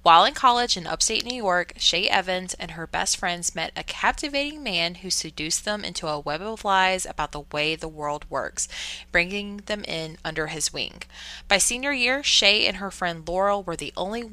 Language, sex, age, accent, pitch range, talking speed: English, female, 20-39, American, 170-200 Hz, 200 wpm